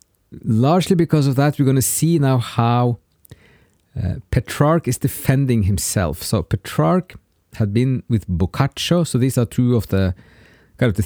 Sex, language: male, English